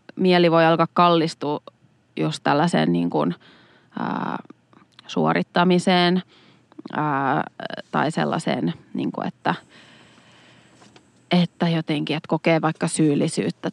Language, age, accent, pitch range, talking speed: Finnish, 30-49, native, 155-180 Hz, 95 wpm